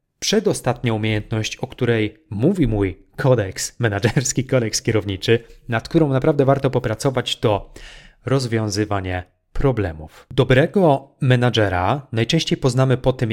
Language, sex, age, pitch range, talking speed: Polish, male, 30-49, 115-135 Hz, 110 wpm